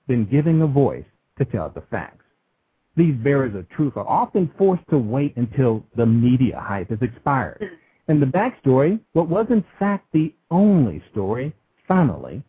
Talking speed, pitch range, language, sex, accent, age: 165 wpm, 135-185 Hz, English, male, American, 50-69